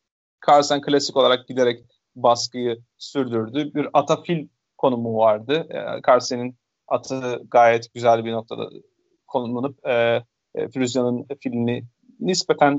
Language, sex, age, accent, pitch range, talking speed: Turkish, male, 40-59, native, 120-170 Hz, 105 wpm